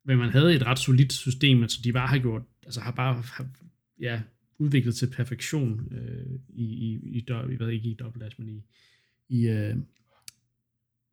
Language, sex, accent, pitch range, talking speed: Danish, male, native, 115-130 Hz, 180 wpm